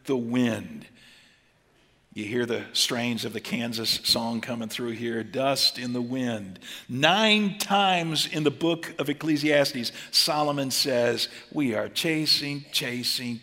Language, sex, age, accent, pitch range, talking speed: English, male, 50-69, American, 120-175 Hz, 135 wpm